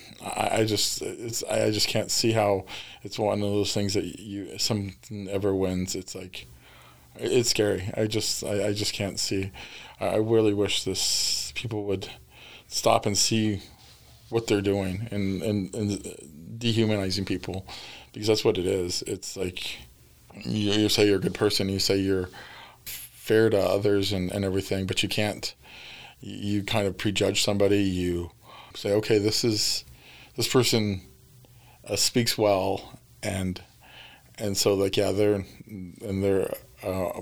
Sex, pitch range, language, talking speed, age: male, 95-110 Hz, English, 155 wpm, 20-39